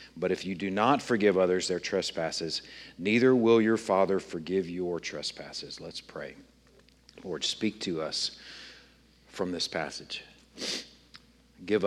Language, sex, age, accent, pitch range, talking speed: English, male, 50-69, American, 90-120 Hz, 130 wpm